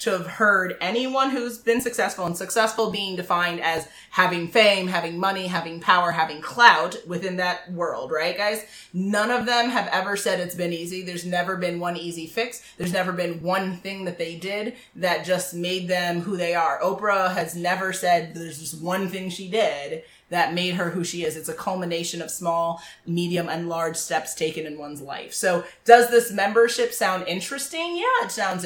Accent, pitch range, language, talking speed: American, 170-215 Hz, English, 195 wpm